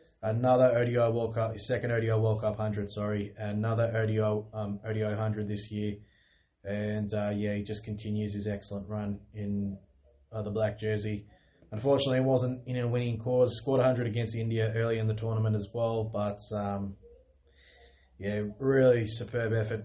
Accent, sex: Australian, male